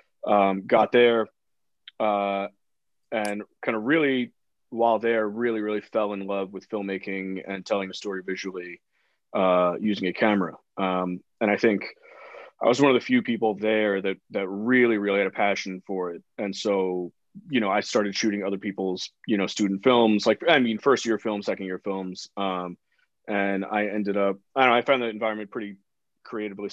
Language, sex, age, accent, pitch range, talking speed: English, male, 30-49, American, 100-115 Hz, 185 wpm